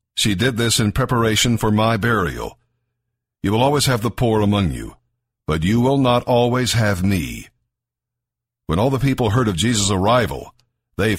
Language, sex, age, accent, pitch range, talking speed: English, male, 50-69, American, 105-125 Hz, 170 wpm